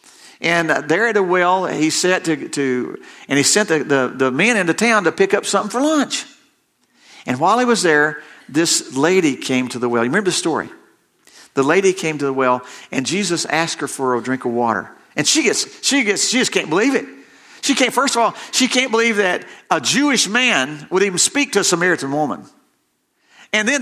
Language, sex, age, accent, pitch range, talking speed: English, male, 50-69, American, 155-255 Hz, 215 wpm